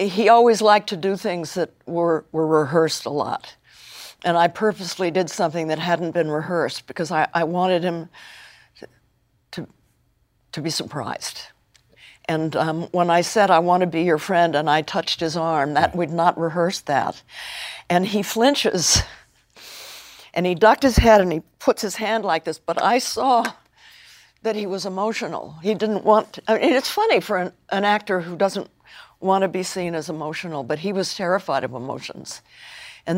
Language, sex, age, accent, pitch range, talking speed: English, female, 60-79, American, 165-205 Hz, 185 wpm